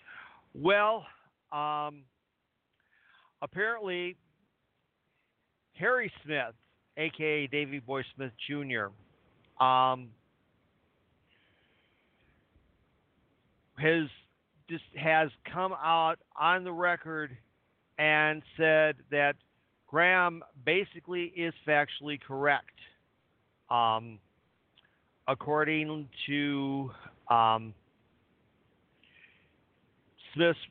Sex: male